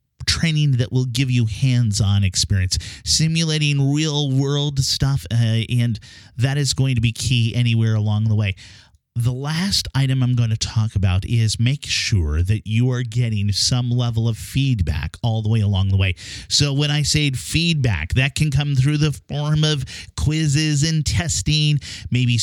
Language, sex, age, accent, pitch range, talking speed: English, male, 30-49, American, 105-140 Hz, 170 wpm